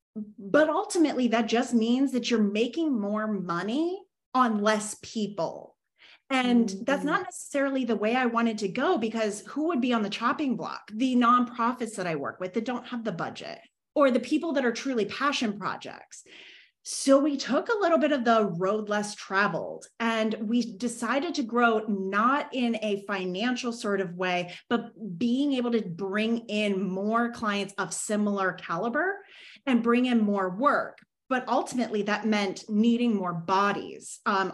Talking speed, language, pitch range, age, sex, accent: 170 wpm, English, 205-255 Hz, 30-49, female, American